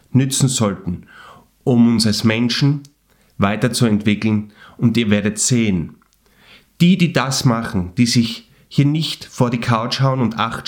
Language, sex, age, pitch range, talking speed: German, male, 30-49, 105-125 Hz, 140 wpm